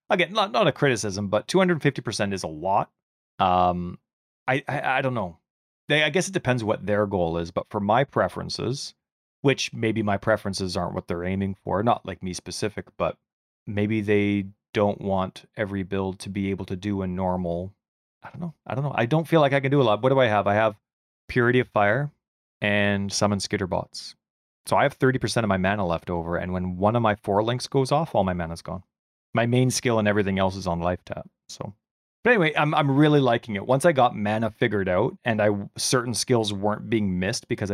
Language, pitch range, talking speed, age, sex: English, 95-120 Hz, 220 wpm, 30-49, male